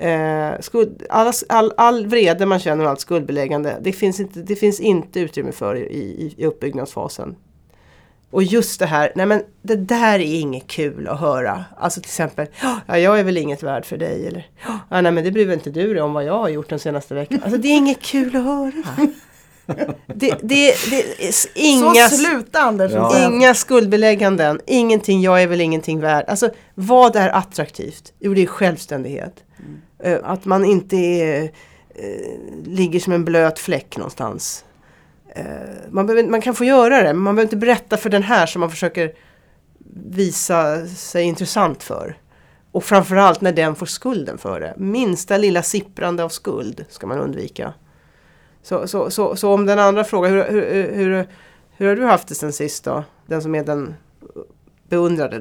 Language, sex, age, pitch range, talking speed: English, female, 40-59, 160-220 Hz, 180 wpm